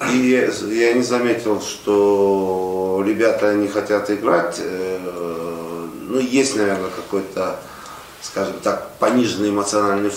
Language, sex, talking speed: Russian, male, 100 wpm